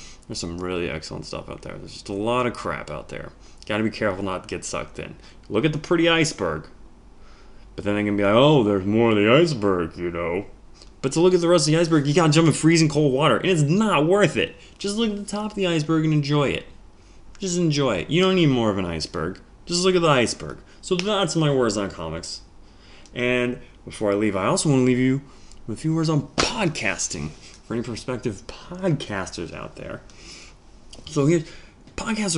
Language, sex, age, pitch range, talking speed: English, male, 20-39, 100-160 Hz, 225 wpm